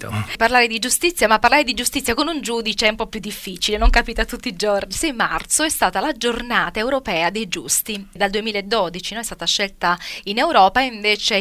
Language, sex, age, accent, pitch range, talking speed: Italian, female, 20-39, native, 205-250 Hz, 210 wpm